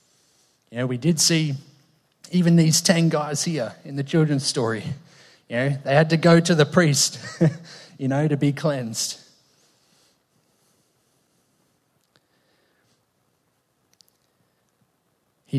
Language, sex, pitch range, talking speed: English, male, 130-165 Hz, 115 wpm